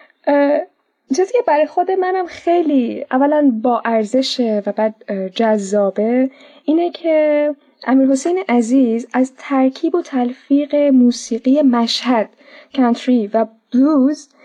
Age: 10-29